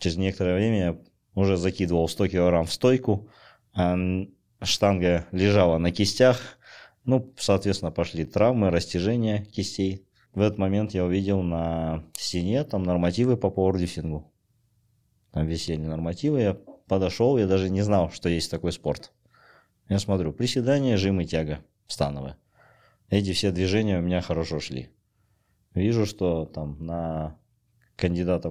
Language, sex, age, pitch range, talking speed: Russian, male, 20-39, 85-105 Hz, 135 wpm